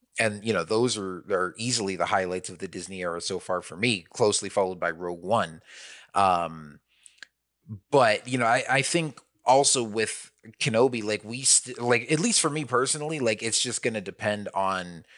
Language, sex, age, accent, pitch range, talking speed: English, male, 30-49, American, 100-130 Hz, 195 wpm